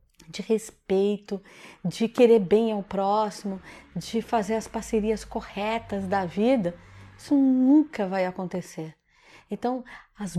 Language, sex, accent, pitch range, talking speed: Portuguese, female, Brazilian, 200-245 Hz, 115 wpm